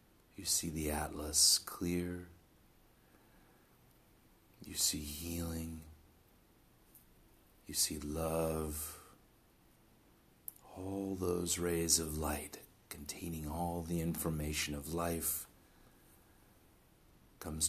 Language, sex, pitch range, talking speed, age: English, male, 75-85 Hz, 80 wpm, 40-59